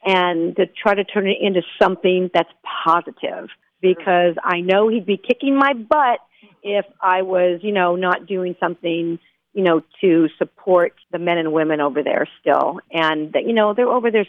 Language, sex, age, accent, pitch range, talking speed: English, female, 50-69, American, 170-230 Hz, 180 wpm